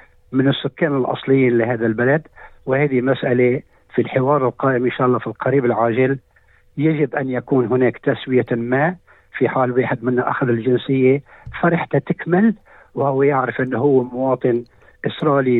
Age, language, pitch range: 60-79, Arabic, 125-145 Hz